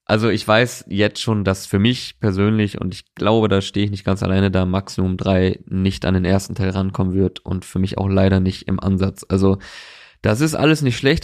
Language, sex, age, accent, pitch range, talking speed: German, male, 20-39, German, 100-120 Hz, 225 wpm